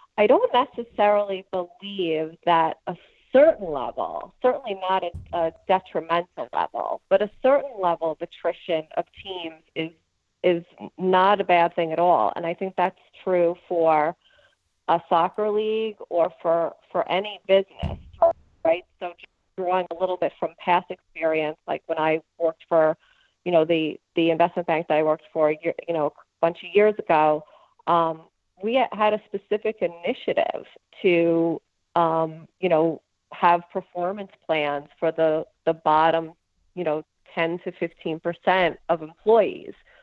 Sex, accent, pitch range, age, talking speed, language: female, American, 160-185 Hz, 40-59, 150 wpm, English